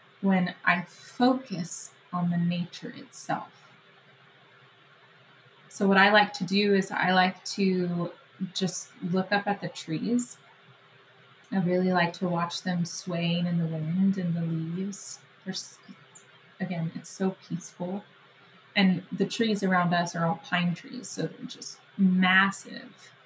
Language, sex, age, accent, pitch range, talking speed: English, female, 20-39, American, 175-205 Hz, 140 wpm